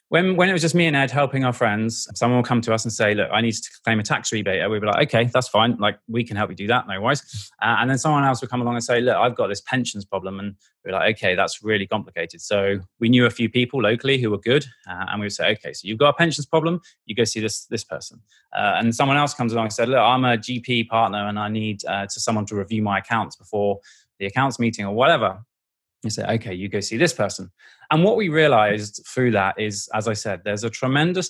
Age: 20-39